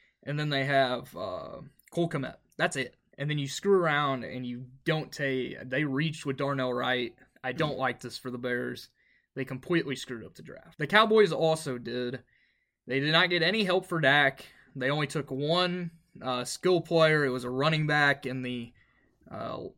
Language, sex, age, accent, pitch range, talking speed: English, male, 20-39, American, 130-160 Hz, 190 wpm